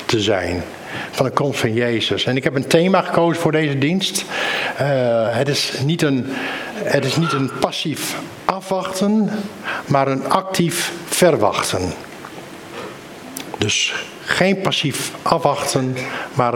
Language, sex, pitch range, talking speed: Dutch, male, 125-170 Hz, 120 wpm